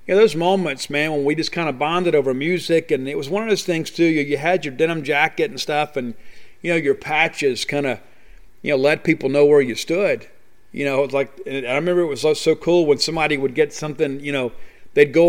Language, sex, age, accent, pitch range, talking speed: English, male, 50-69, American, 135-160 Hz, 250 wpm